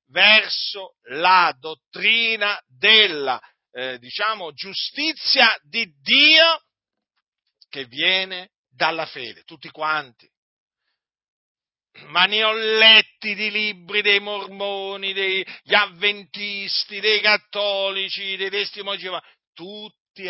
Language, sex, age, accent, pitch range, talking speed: Italian, male, 50-69, native, 165-220 Hz, 90 wpm